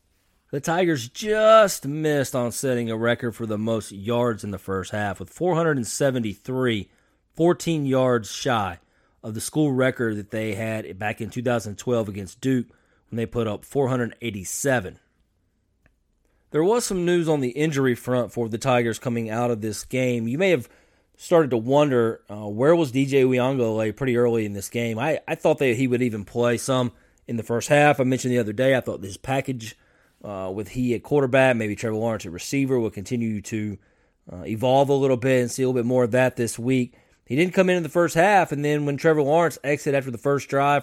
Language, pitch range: English, 115-145 Hz